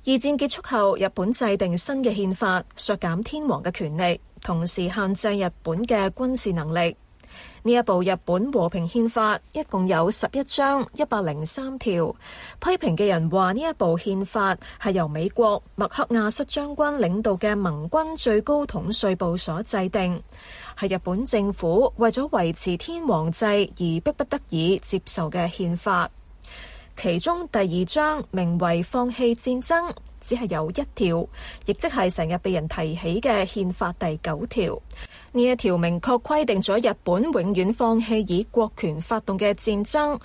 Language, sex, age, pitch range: Chinese, female, 20-39, 180-245 Hz